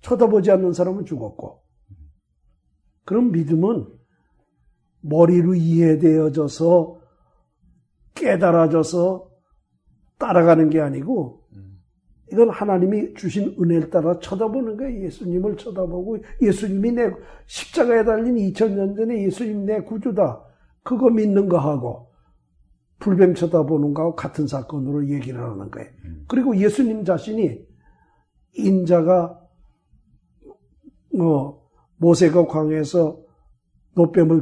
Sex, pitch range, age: male, 140-200 Hz, 60-79